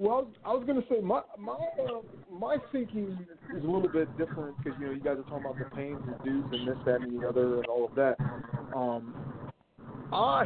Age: 40-59